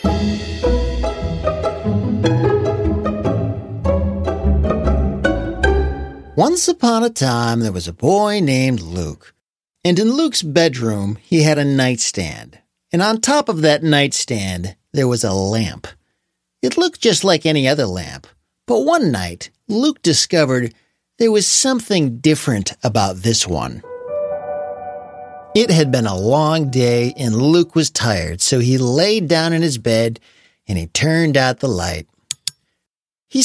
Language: English